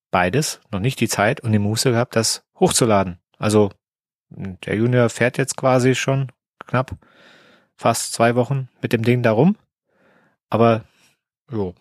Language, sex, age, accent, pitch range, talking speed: German, male, 30-49, German, 100-130 Hz, 145 wpm